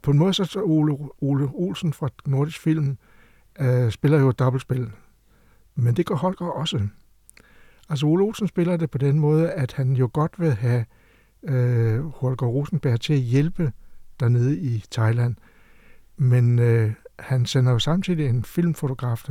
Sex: male